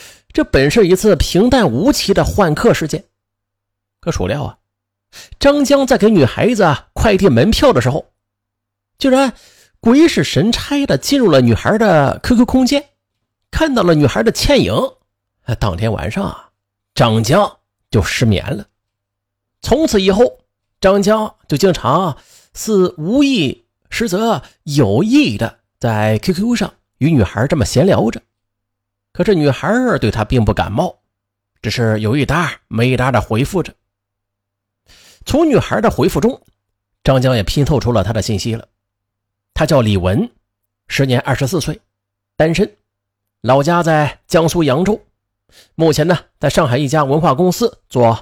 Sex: male